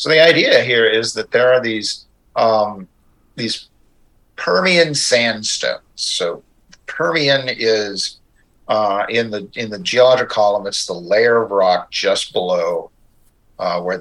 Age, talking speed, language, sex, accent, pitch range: 50-69, 135 wpm, English, male, American, 105-130 Hz